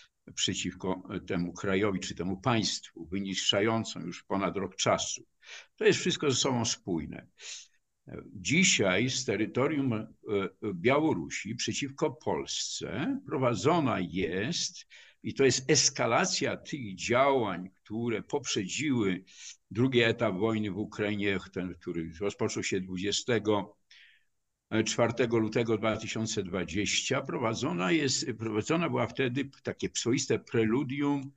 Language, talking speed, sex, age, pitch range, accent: Polish, 100 wpm, male, 50-69, 100-140 Hz, native